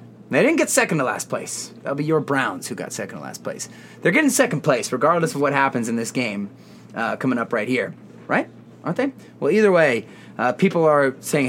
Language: English